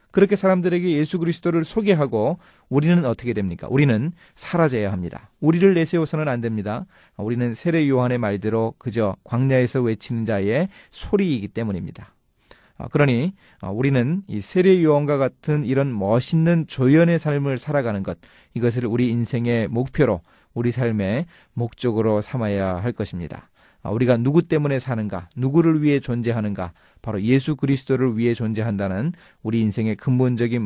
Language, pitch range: Korean, 110-155 Hz